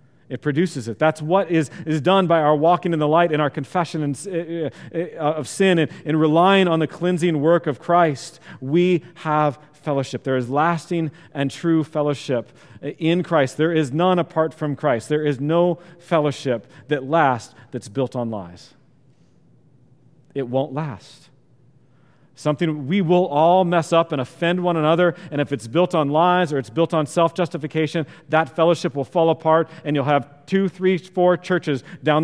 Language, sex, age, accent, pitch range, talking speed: English, male, 40-59, American, 135-165 Hz, 180 wpm